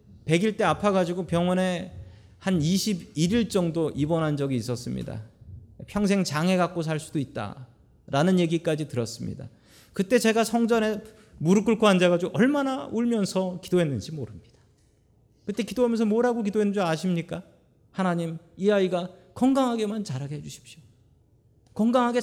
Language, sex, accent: Korean, male, native